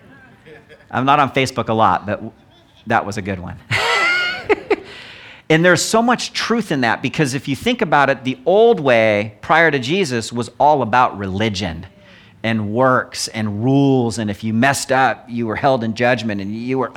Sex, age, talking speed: male, 40-59, 185 wpm